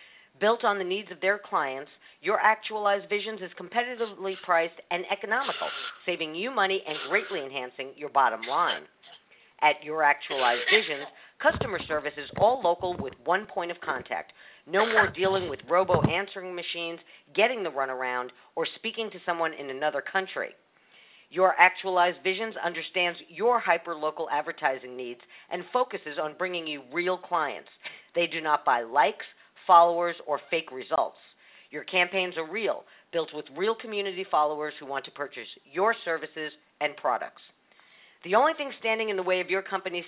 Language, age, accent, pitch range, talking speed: English, 50-69, American, 155-200 Hz, 155 wpm